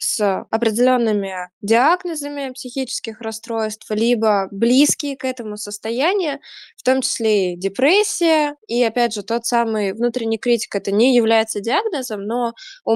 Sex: female